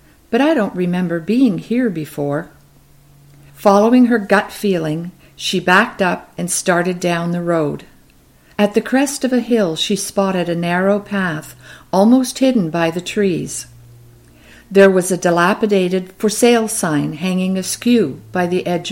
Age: 50-69